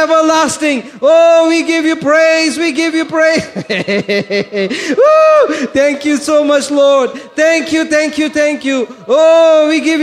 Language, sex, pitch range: English, male, 225-315 Hz